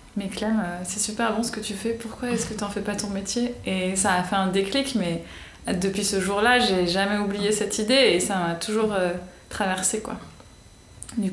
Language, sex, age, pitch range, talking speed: French, female, 20-39, 185-210 Hz, 210 wpm